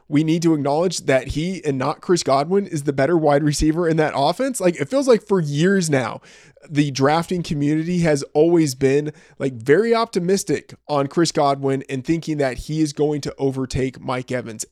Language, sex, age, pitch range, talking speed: English, male, 20-39, 135-175 Hz, 190 wpm